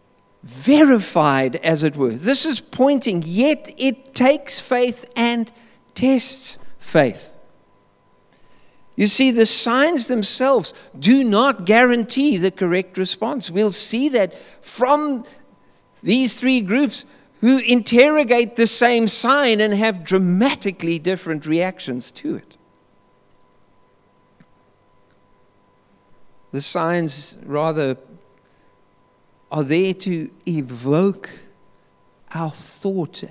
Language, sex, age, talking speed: English, male, 60-79, 95 wpm